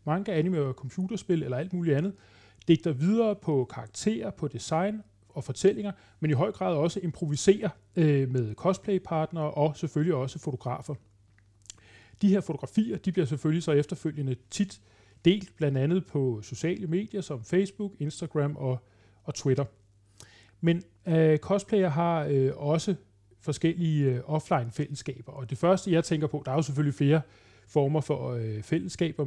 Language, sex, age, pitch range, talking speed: Danish, male, 30-49, 130-170 Hz, 150 wpm